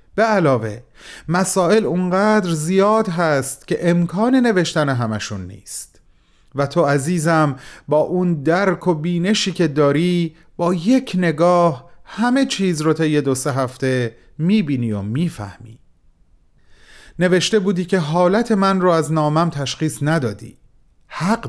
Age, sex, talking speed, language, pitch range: 40-59, male, 125 wpm, Persian, 135-185 Hz